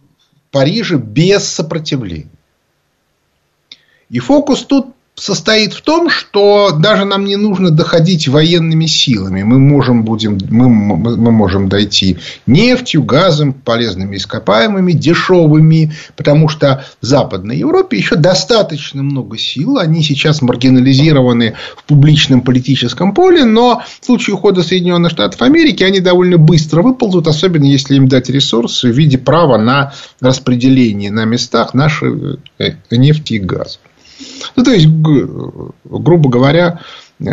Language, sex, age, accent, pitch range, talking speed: Russian, male, 30-49, native, 125-175 Hz, 120 wpm